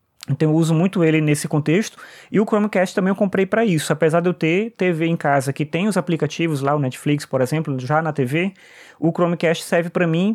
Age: 20-39